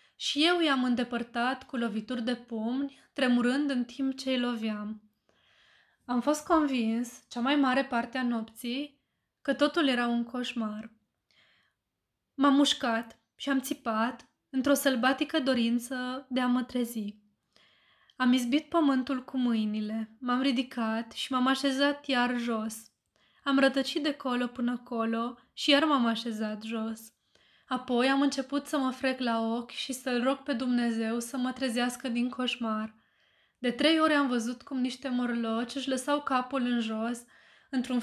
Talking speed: 150 wpm